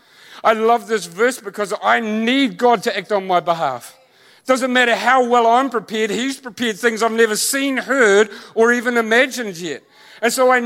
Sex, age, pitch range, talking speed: male, 40-59, 225-260 Hz, 190 wpm